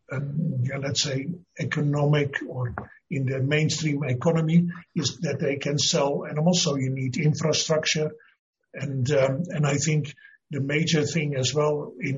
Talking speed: 155 wpm